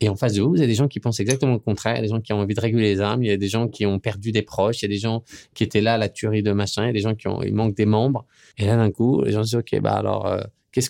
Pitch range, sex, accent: 100-130 Hz, male, French